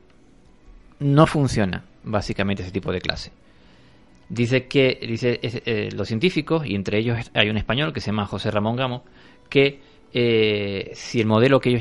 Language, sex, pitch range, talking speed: Spanish, male, 100-125 Hz, 165 wpm